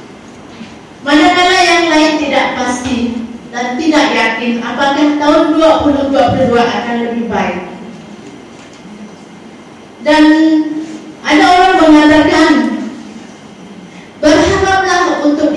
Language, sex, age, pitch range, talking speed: Malay, female, 30-49, 235-310 Hz, 75 wpm